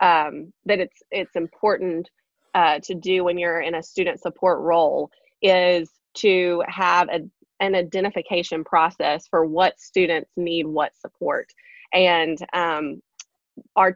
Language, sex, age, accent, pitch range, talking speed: English, female, 20-39, American, 165-190 Hz, 135 wpm